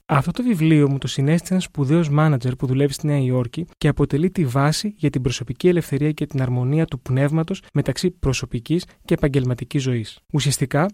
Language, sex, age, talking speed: Greek, male, 20-39, 180 wpm